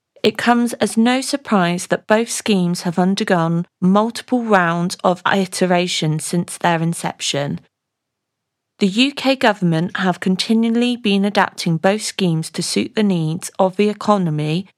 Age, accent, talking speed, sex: 40-59, British, 135 wpm, female